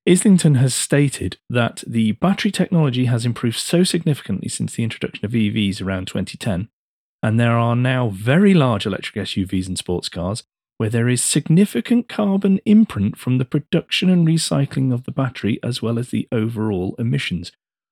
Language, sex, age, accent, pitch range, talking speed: English, male, 30-49, British, 105-155 Hz, 165 wpm